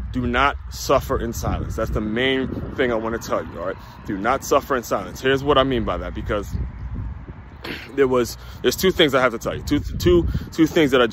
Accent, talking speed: American, 235 wpm